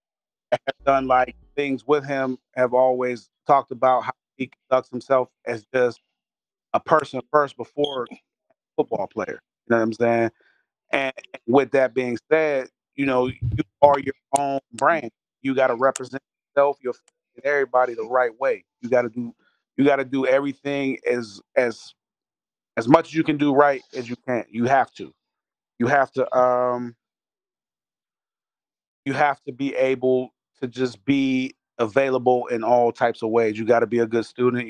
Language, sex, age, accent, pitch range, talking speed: English, male, 30-49, American, 125-150 Hz, 170 wpm